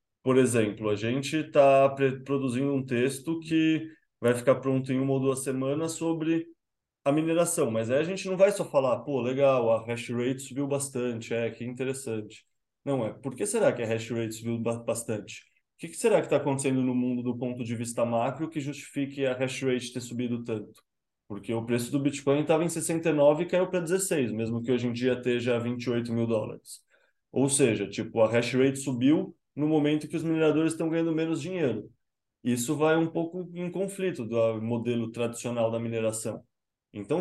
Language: Portuguese